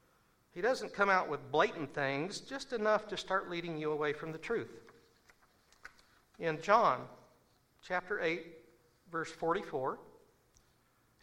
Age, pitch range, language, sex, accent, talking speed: 60-79, 150-210 Hz, English, male, American, 125 wpm